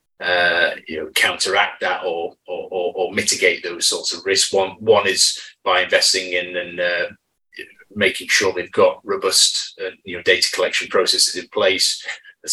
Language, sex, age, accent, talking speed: English, male, 30-49, British, 175 wpm